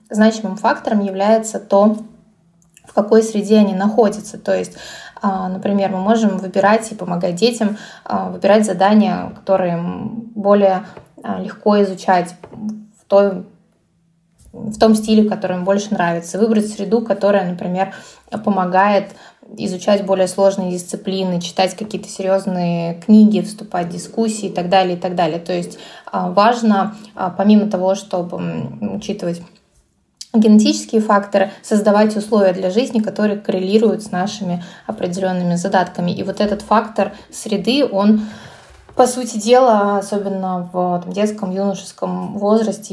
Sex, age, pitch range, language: female, 20-39, 185-215 Hz, Russian